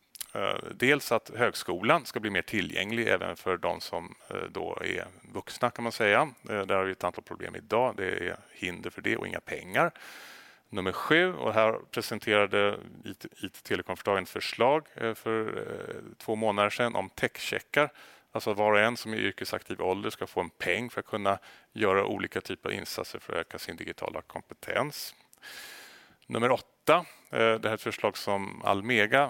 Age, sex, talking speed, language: 30-49, male, 165 wpm, Swedish